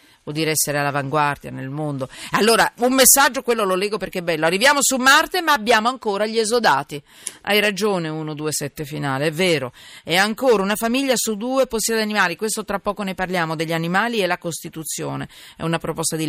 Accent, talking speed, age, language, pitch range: native, 195 wpm, 40-59, Italian, 155-210 Hz